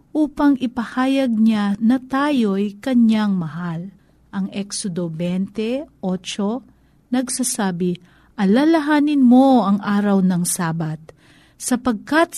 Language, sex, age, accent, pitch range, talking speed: Filipino, female, 50-69, native, 180-245 Hz, 90 wpm